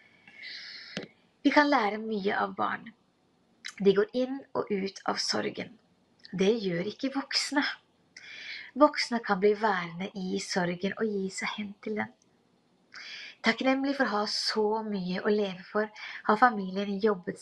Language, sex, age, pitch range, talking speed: English, female, 30-49, 200-260 Hz, 135 wpm